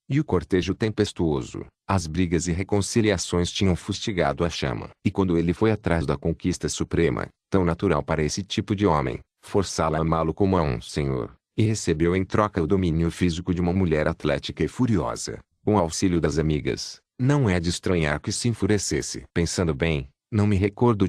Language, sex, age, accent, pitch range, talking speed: Portuguese, male, 40-59, Brazilian, 80-100 Hz, 180 wpm